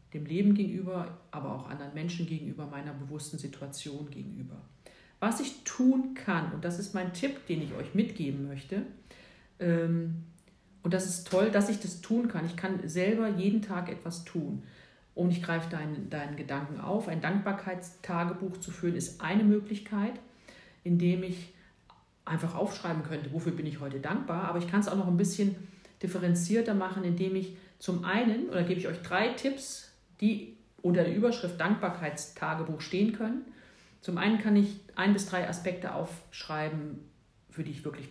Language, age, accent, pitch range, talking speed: German, 40-59, German, 160-200 Hz, 165 wpm